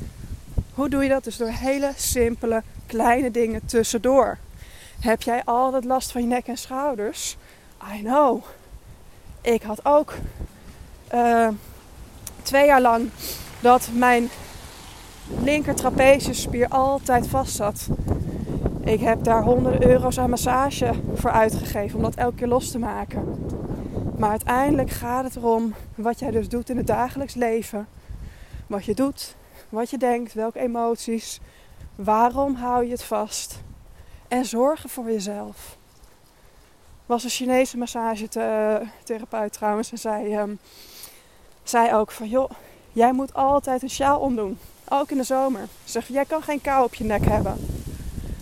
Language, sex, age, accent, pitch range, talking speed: Dutch, female, 20-39, Dutch, 225-265 Hz, 140 wpm